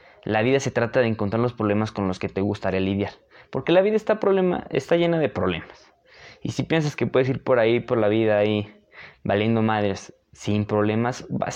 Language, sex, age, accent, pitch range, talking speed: Spanish, male, 20-39, Mexican, 105-145 Hz, 210 wpm